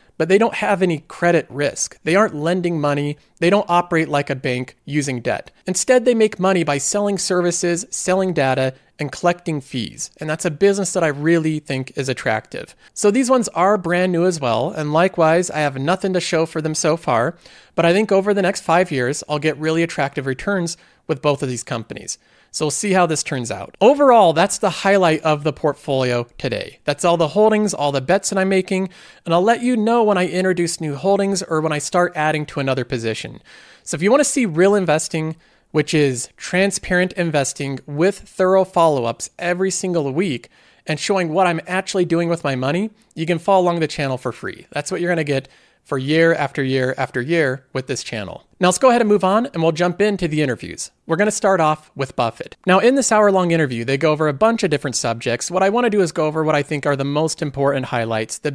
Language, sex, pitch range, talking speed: English, male, 145-190 Hz, 225 wpm